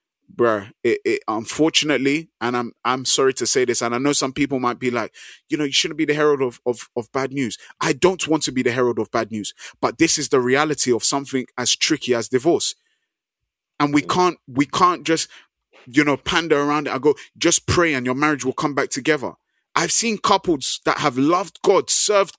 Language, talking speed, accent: English, 220 wpm, British